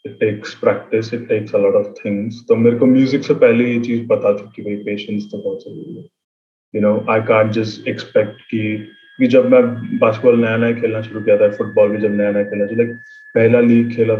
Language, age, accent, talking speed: Hindi, 20-39, native, 230 wpm